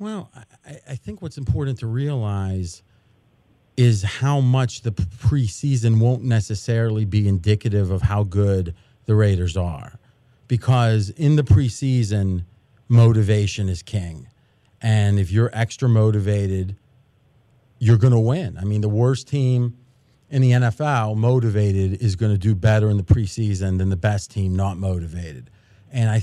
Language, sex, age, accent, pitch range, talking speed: English, male, 40-59, American, 105-125 Hz, 145 wpm